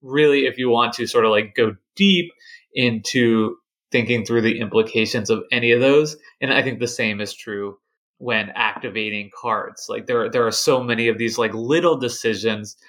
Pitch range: 115-155 Hz